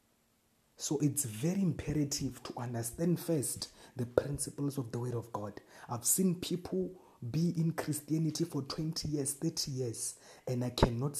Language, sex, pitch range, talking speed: English, male, 120-150 Hz, 150 wpm